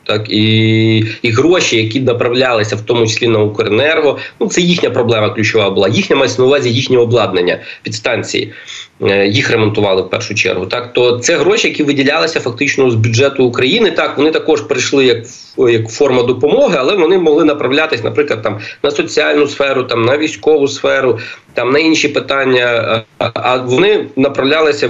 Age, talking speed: 20-39, 155 wpm